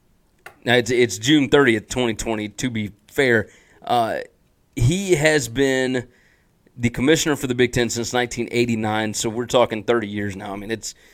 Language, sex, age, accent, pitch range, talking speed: English, male, 30-49, American, 115-150 Hz, 160 wpm